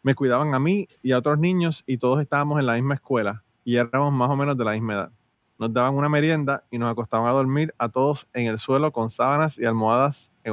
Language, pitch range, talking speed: Spanish, 110-135 Hz, 245 wpm